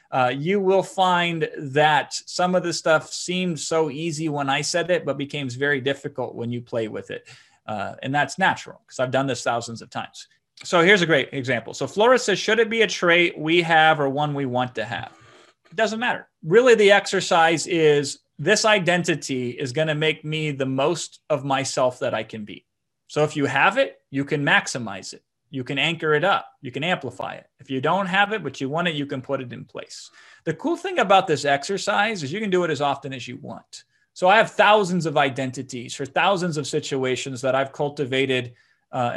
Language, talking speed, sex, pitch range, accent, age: English, 220 wpm, male, 130-175 Hz, American, 30-49